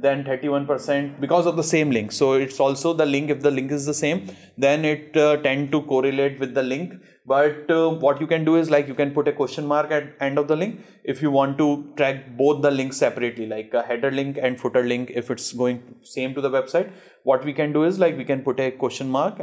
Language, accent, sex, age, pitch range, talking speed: English, Indian, male, 20-39, 130-155 Hz, 250 wpm